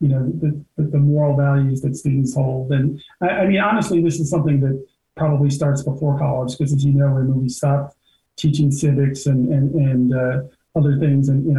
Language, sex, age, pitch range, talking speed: English, male, 40-59, 135-155 Hz, 200 wpm